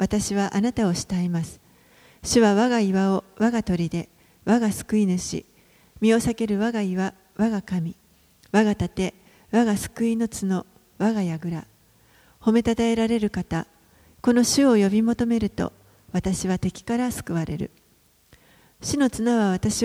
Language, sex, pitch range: Japanese, female, 185-225 Hz